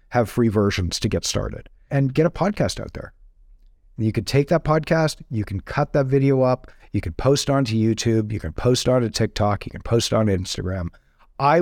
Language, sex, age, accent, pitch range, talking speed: English, male, 40-59, American, 110-145 Hz, 200 wpm